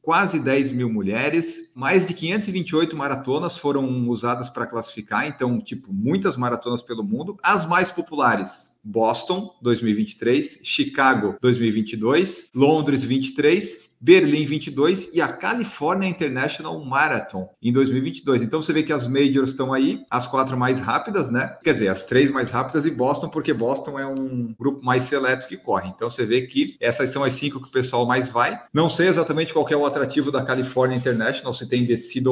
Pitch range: 120-165 Hz